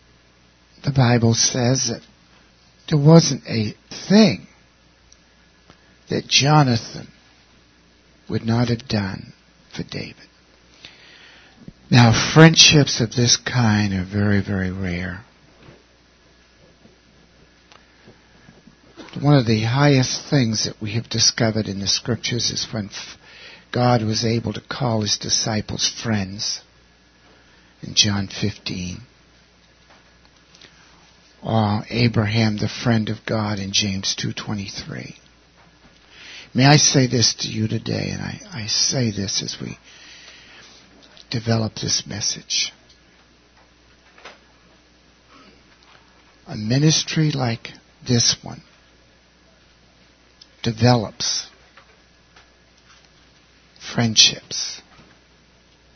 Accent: American